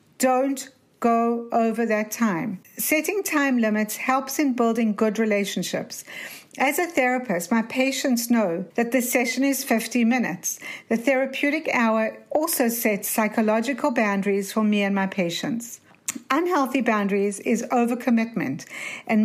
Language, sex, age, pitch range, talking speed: English, female, 60-79, 215-260 Hz, 130 wpm